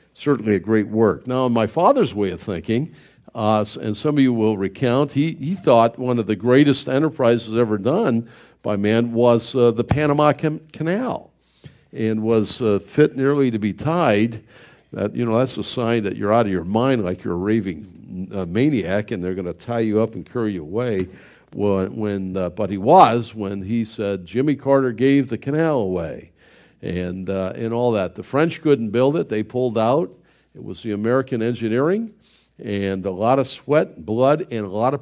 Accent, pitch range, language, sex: American, 100-125 Hz, English, male